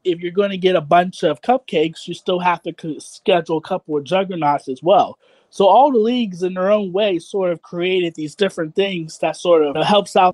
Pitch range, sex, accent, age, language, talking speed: 160-190 Hz, male, American, 30-49, English, 225 wpm